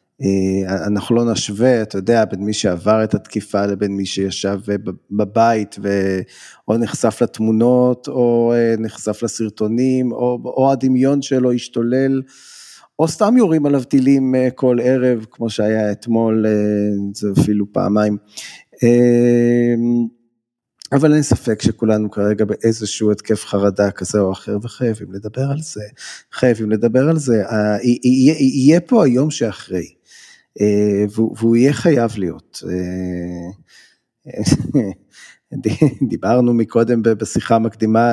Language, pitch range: Hebrew, 105-125 Hz